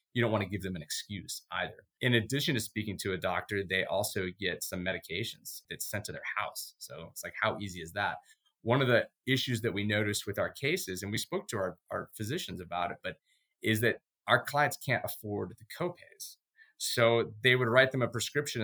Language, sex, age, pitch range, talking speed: English, male, 30-49, 100-120 Hz, 220 wpm